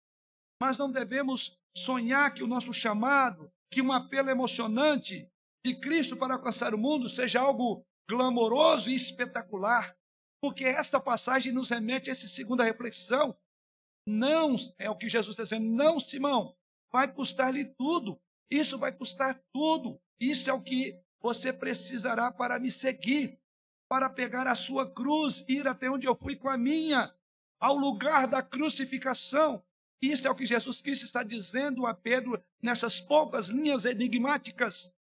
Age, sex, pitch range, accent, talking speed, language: 60-79, male, 210-270 Hz, Brazilian, 150 wpm, Portuguese